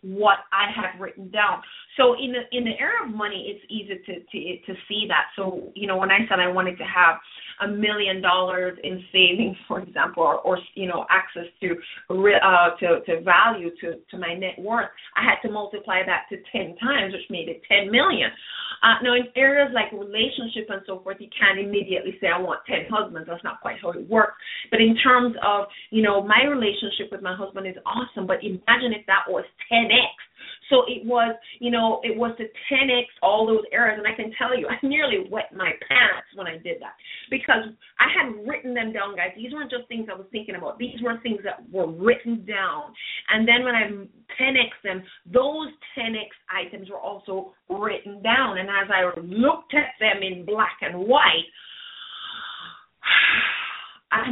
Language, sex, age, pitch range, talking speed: English, female, 30-49, 190-245 Hz, 200 wpm